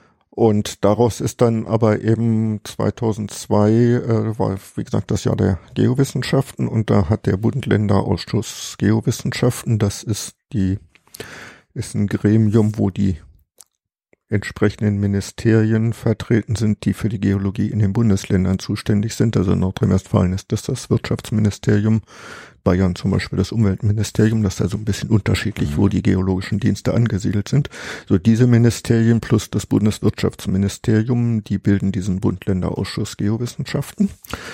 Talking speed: 135 wpm